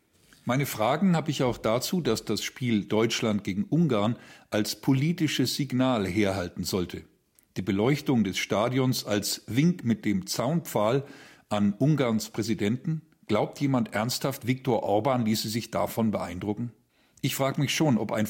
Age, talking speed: 50-69, 145 wpm